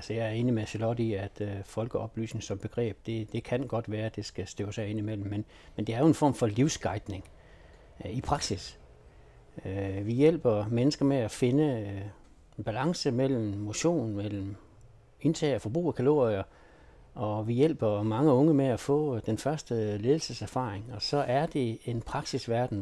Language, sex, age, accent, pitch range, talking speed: Danish, male, 60-79, native, 105-130 Hz, 175 wpm